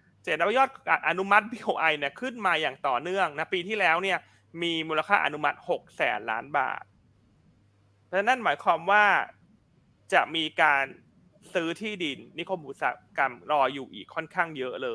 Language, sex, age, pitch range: Thai, male, 20-39, 150-205 Hz